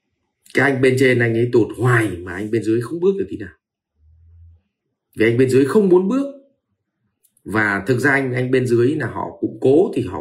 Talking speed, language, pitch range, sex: 220 wpm, Vietnamese, 95-120 Hz, male